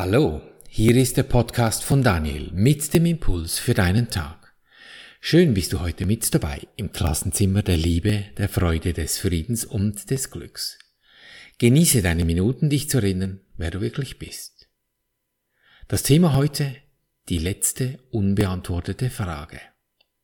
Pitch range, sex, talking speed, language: 90-125 Hz, male, 140 wpm, German